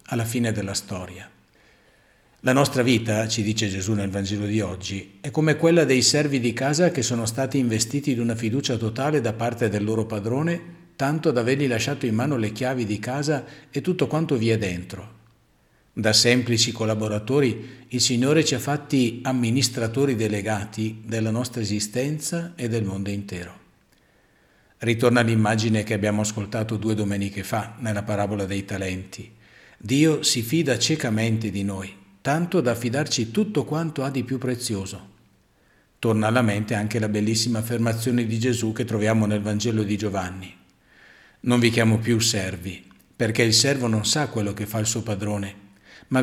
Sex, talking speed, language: male, 165 wpm, Italian